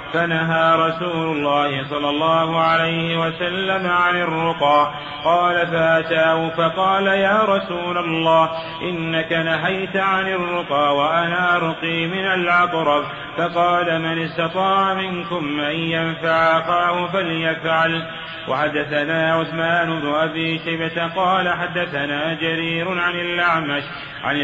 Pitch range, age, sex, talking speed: 160-175 Hz, 30-49, male, 105 wpm